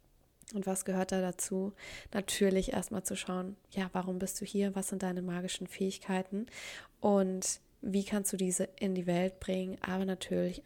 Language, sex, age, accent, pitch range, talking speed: German, female, 20-39, German, 185-200 Hz, 170 wpm